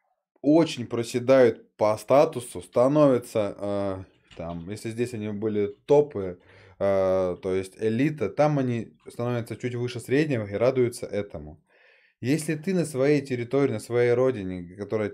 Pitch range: 105-130 Hz